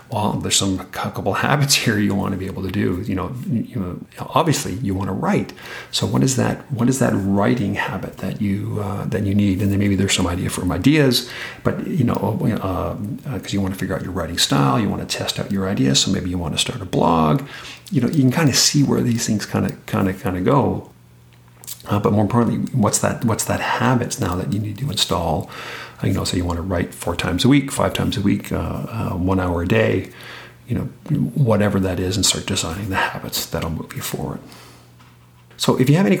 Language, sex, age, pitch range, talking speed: English, male, 40-59, 90-110 Hz, 240 wpm